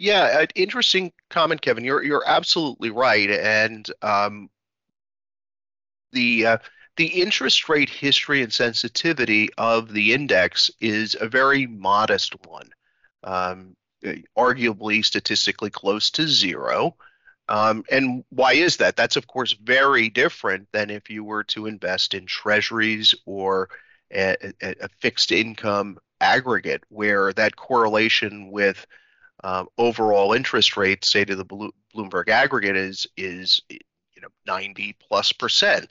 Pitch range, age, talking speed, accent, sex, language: 100-115 Hz, 30-49, 130 wpm, American, male, English